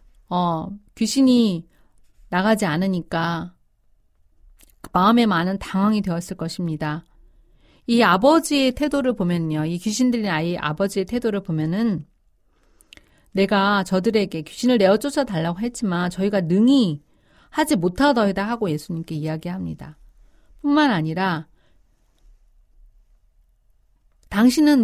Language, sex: Korean, female